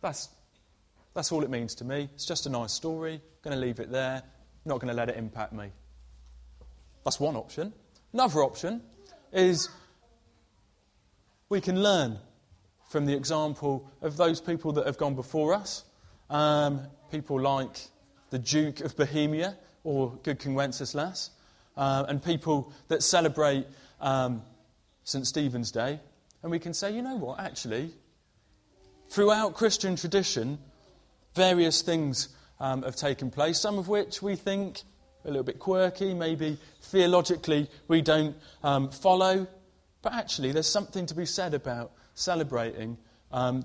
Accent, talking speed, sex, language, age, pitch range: British, 150 wpm, male, English, 20-39, 130-175 Hz